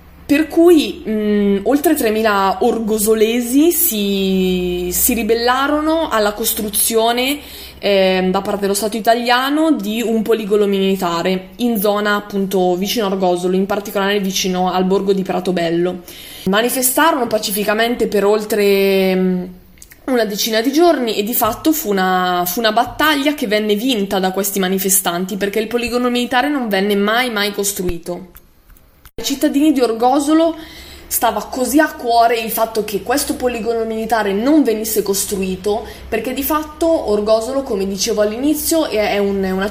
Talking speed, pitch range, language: 140 wpm, 195-245 Hz, Italian